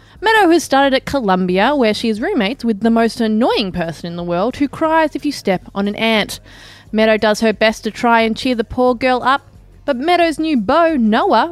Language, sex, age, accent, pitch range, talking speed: English, female, 20-39, Australian, 205-295 Hz, 220 wpm